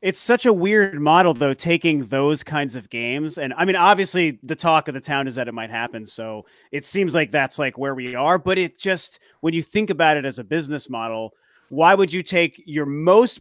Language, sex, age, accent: English, male, 30-49, American